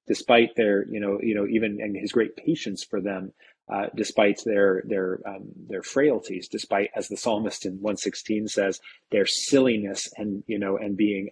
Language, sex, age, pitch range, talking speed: English, male, 20-39, 100-110 Hz, 185 wpm